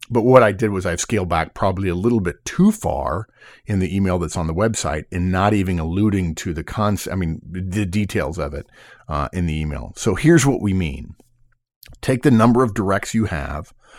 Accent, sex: American, male